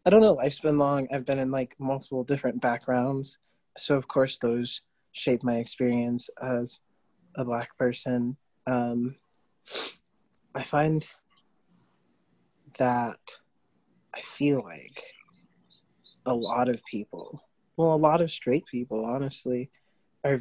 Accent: American